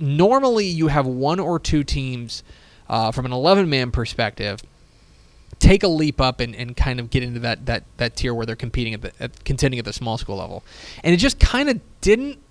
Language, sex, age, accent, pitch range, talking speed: English, male, 20-39, American, 120-185 Hz, 210 wpm